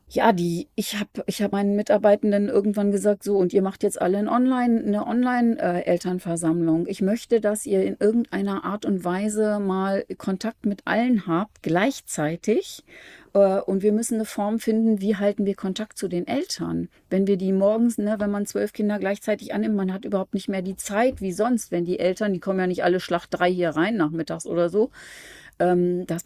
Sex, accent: female, German